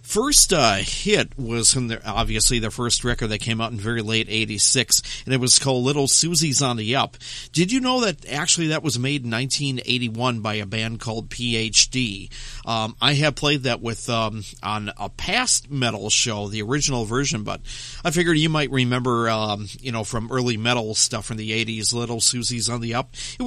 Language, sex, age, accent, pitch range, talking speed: English, male, 50-69, American, 115-140 Hz, 200 wpm